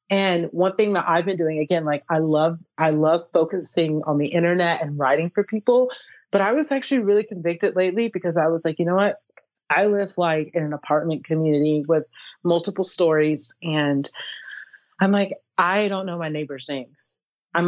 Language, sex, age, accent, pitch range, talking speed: English, female, 30-49, American, 155-205 Hz, 185 wpm